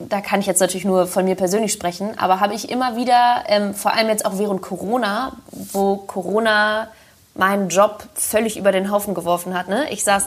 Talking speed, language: 205 wpm, German